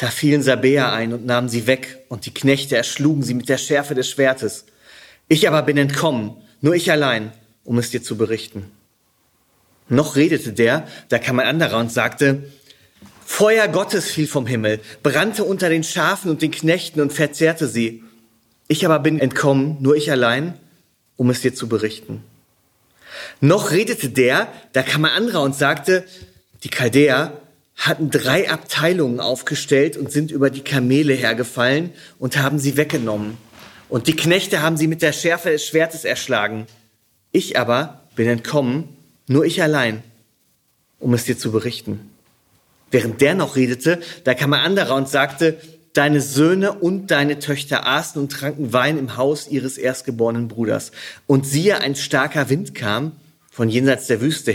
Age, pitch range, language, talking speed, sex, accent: 30-49, 120-150 Hz, German, 165 wpm, male, German